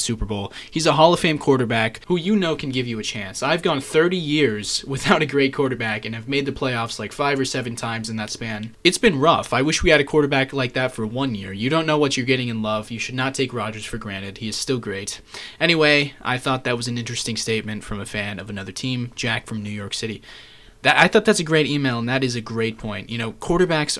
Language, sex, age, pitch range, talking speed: English, male, 20-39, 115-160 Hz, 265 wpm